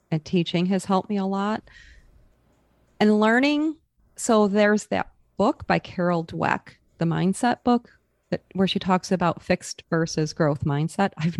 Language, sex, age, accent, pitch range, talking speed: English, female, 30-49, American, 155-200 Hz, 155 wpm